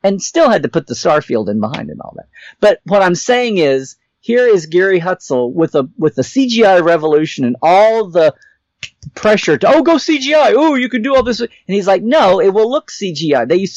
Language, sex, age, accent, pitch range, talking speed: English, male, 50-69, American, 145-215 Hz, 220 wpm